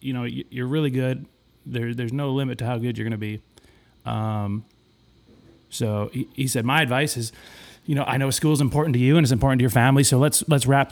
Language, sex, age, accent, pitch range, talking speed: English, male, 30-49, American, 120-145 Hz, 225 wpm